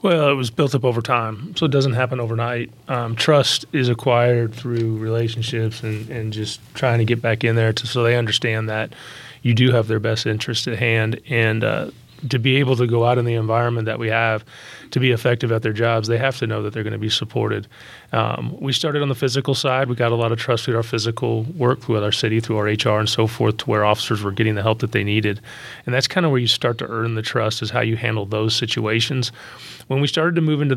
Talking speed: 250 wpm